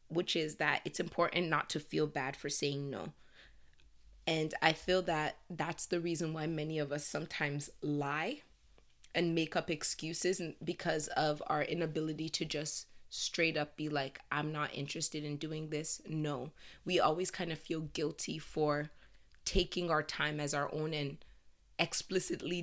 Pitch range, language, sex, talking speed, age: 150-175 Hz, English, female, 160 wpm, 20-39